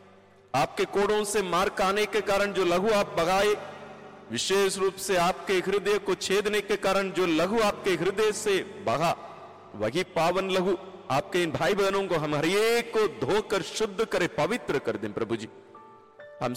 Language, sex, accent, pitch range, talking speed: Hindi, male, native, 155-205 Hz, 165 wpm